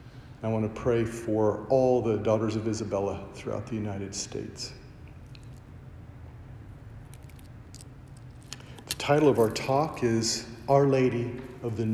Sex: male